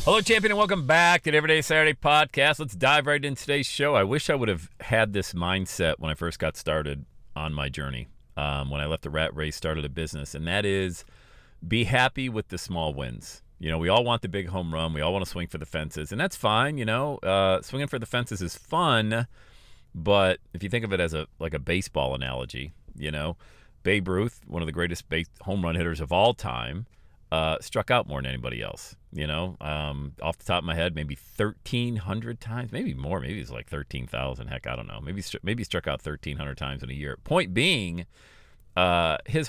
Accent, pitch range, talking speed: American, 75-115 Hz, 225 wpm